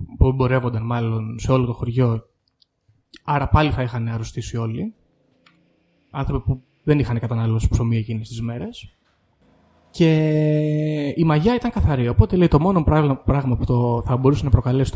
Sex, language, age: male, Greek, 20-39